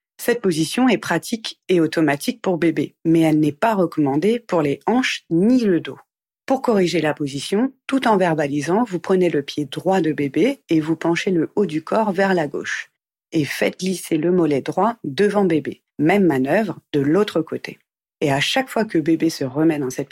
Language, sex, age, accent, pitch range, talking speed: French, female, 40-59, French, 150-210 Hz, 195 wpm